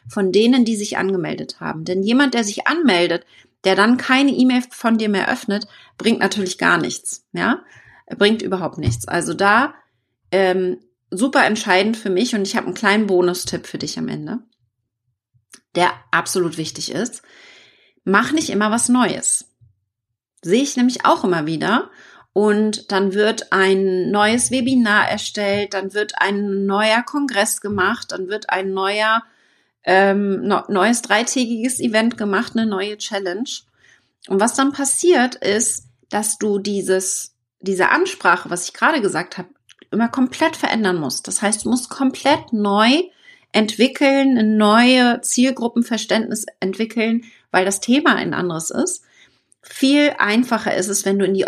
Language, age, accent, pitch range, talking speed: German, 30-49, German, 185-240 Hz, 150 wpm